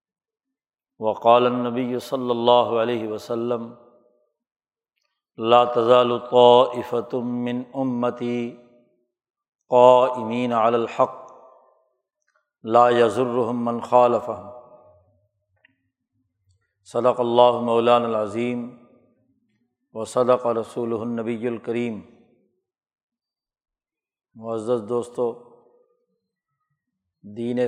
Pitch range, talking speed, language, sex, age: 120-130 Hz, 60 wpm, Urdu, male, 50-69